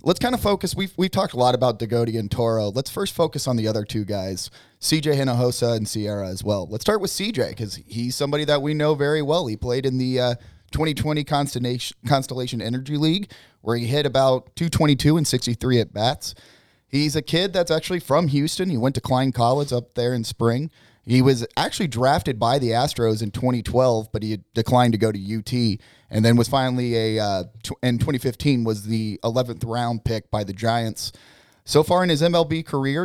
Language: English